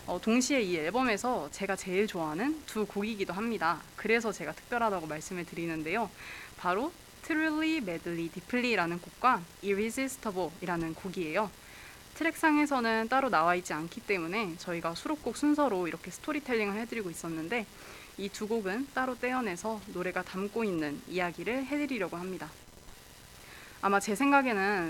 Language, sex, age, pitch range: Korean, female, 20-39, 175-240 Hz